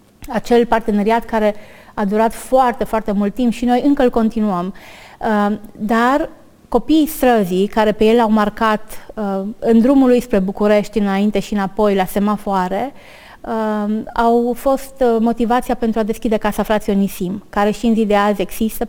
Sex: female